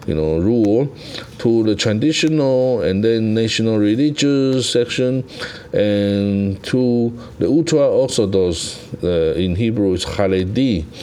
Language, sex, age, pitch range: Chinese, male, 50-69, 100-125 Hz